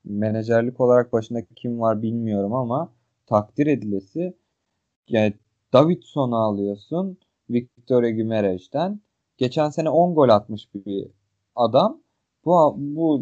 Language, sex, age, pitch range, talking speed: Turkish, male, 30-49, 110-140 Hz, 110 wpm